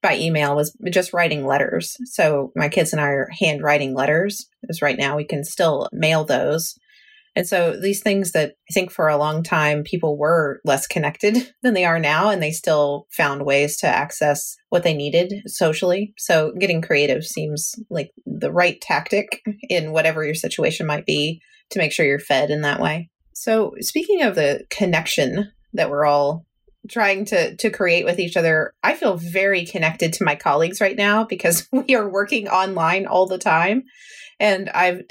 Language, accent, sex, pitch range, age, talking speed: English, American, female, 150-205 Hz, 30-49, 185 wpm